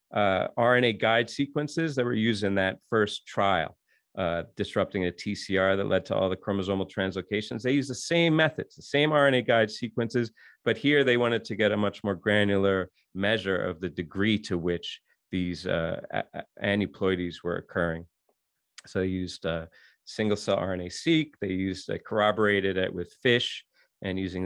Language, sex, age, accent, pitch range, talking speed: English, male, 40-59, American, 95-120 Hz, 175 wpm